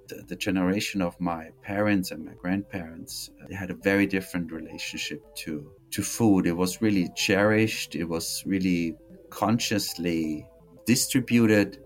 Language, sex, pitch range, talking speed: English, male, 90-110 Hz, 130 wpm